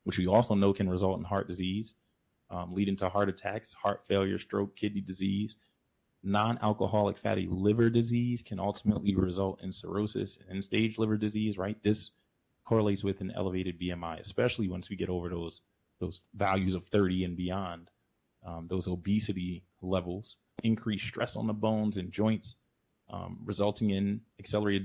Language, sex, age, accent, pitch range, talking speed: English, male, 20-39, American, 95-110 Hz, 160 wpm